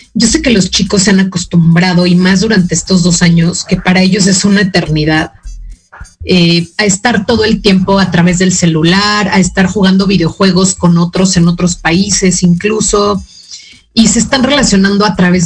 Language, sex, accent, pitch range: Spanish, female, Mexican, 175-205 Hz